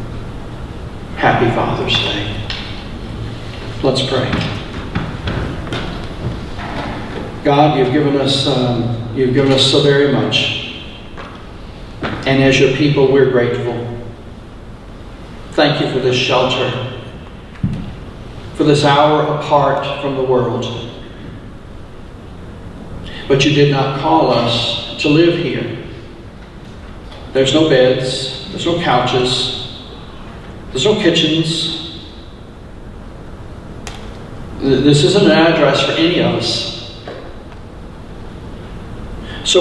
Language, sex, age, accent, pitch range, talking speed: English, male, 40-59, American, 115-155 Hz, 90 wpm